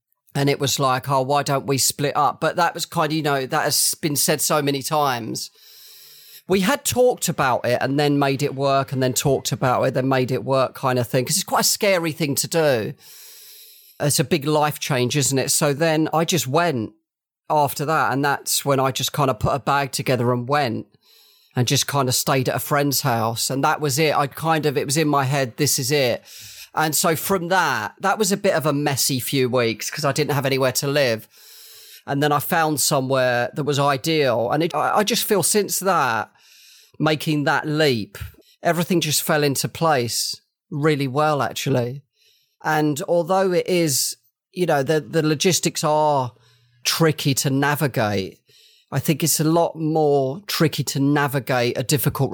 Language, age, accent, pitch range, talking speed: English, 40-59, British, 130-155 Hz, 200 wpm